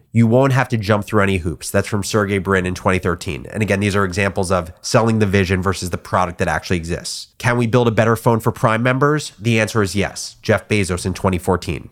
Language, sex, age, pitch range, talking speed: English, male, 30-49, 95-120 Hz, 230 wpm